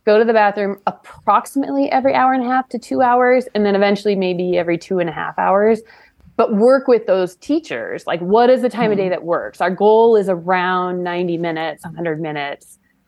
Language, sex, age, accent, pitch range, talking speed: English, female, 20-39, American, 175-225 Hz, 205 wpm